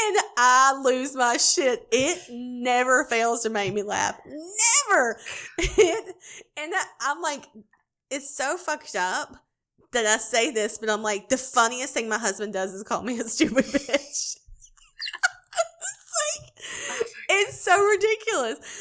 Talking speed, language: 145 wpm, English